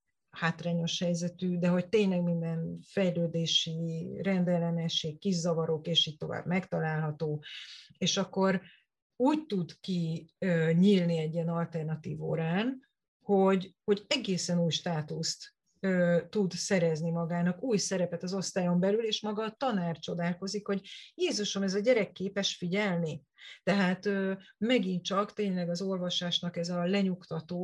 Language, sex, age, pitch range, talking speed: Hungarian, female, 30-49, 165-190 Hz, 130 wpm